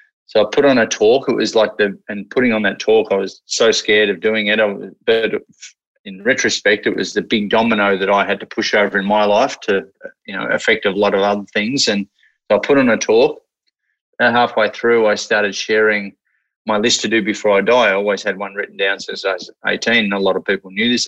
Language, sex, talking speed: English, male, 245 wpm